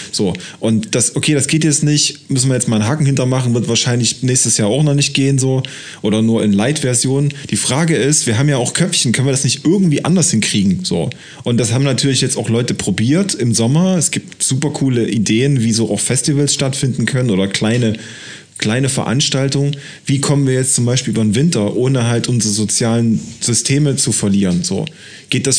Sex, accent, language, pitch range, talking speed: male, German, German, 115-140 Hz, 210 wpm